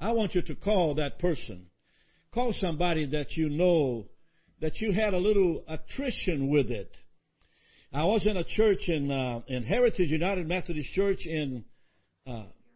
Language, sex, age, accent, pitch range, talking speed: English, male, 60-79, American, 145-210 Hz, 155 wpm